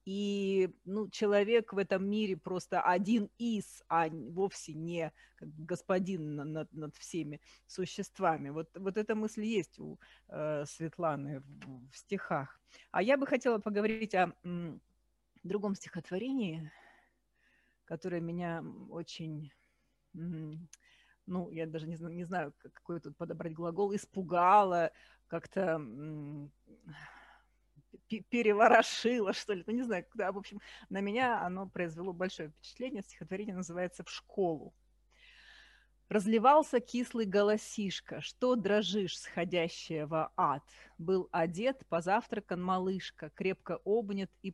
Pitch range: 165-210 Hz